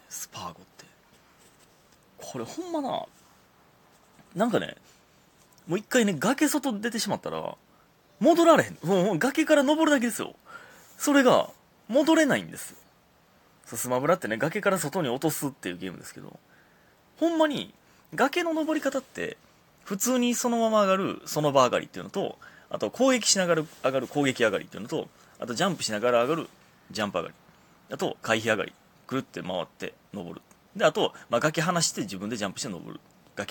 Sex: male